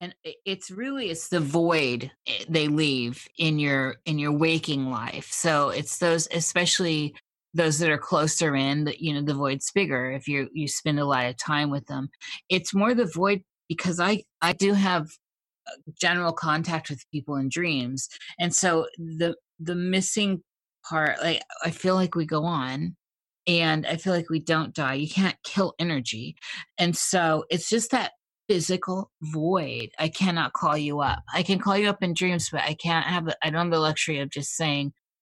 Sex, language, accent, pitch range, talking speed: female, English, American, 145-175 Hz, 185 wpm